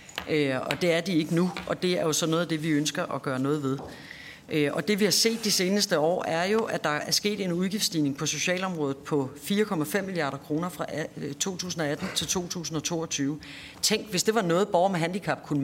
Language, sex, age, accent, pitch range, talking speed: Danish, female, 40-59, native, 155-210 Hz, 210 wpm